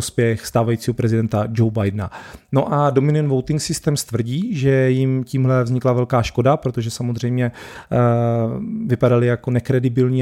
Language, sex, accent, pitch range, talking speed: Czech, male, native, 120-130 Hz, 135 wpm